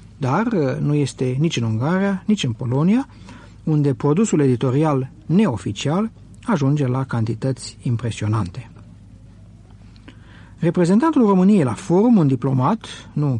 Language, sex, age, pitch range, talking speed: Romanian, male, 60-79, 120-165 Hz, 110 wpm